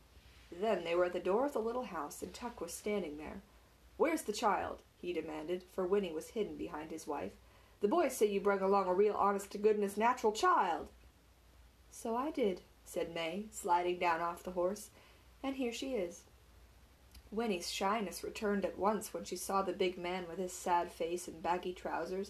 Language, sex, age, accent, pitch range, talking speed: English, female, 30-49, American, 175-235 Hz, 190 wpm